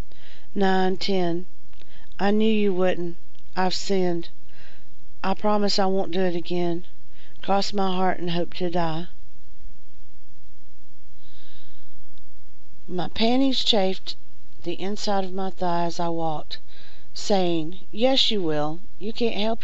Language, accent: English, American